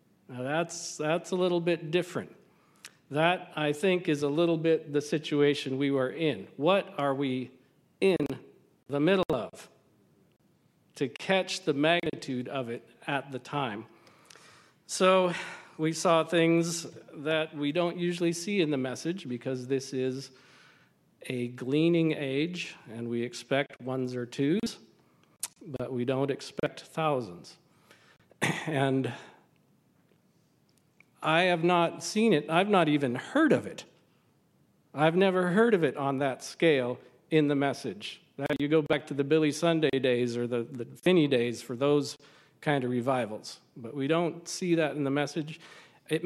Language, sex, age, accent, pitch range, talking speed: English, male, 50-69, American, 135-170 Hz, 150 wpm